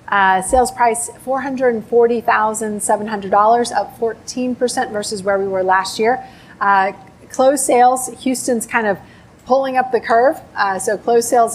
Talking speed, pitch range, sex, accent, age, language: 135 wpm, 210-255 Hz, female, American, 30-49, English